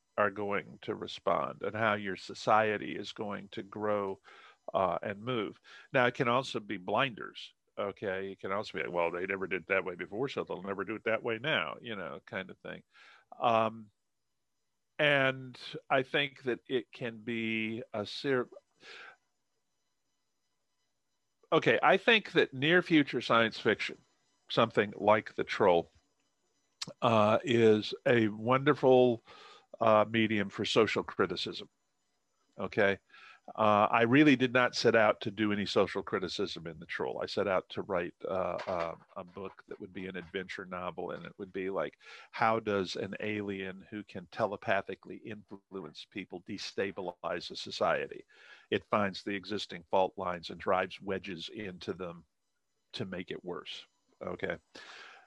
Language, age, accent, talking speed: English, 50-69, American, 155 wpm